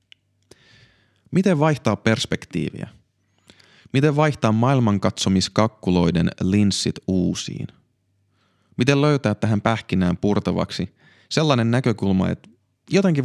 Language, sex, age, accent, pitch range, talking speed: Finnish, male, 30-49, native, 95-115 Hz, 75 wpm